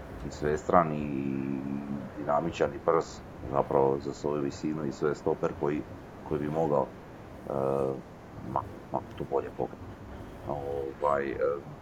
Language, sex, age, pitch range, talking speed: Croatian, male, 40-59, 70-80 Hz, 105 wpm